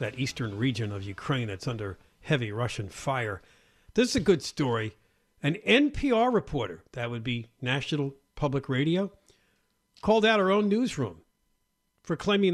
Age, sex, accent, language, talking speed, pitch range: 50-69, male, American, English, 150 wpm, 125-195 Hz